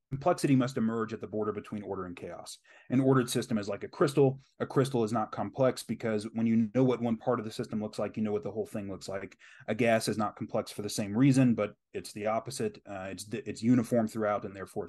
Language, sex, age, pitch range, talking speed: English, male, 30-49, 110-130 Hz, 250 wpm